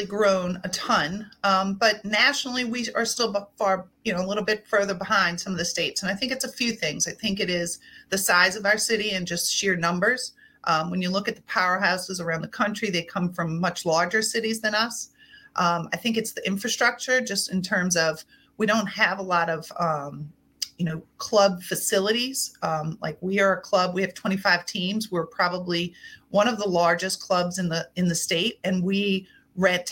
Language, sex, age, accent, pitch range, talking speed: English, female, 40-59, American, 175-215 Hz, 210 wpm